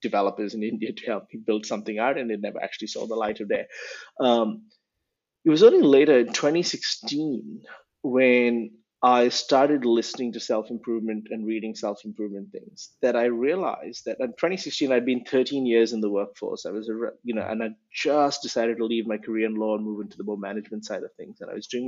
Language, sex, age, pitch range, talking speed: English, male, 20-39, 115-160 Hz, 210 wpm